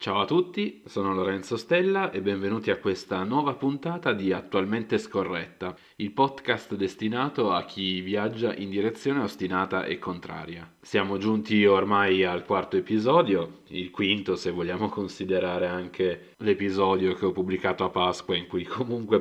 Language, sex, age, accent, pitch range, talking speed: Italian, male, 30-49, native, 90-105 Hz, 145 wpm